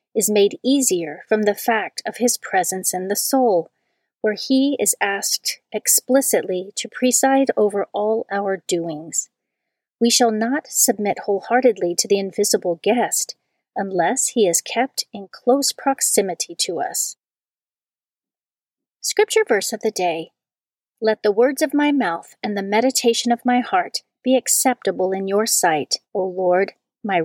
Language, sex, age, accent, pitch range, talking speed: English, female, 40-59, American, 190-260 Hz, 145 wpm